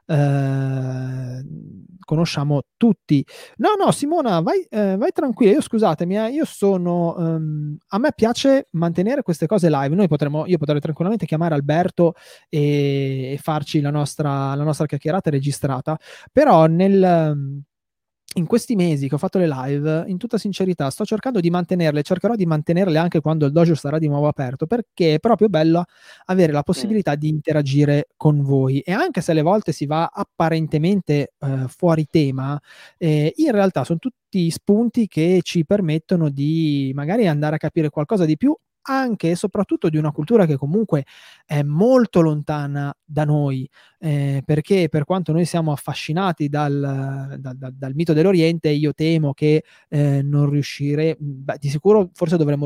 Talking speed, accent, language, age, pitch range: 160 wpm, native, Italian, 20-39, 145-180 Hz